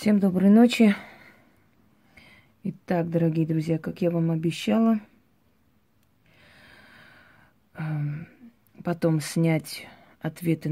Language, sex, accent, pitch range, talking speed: Russian, female, native, 150-185 Hz, 75 wpm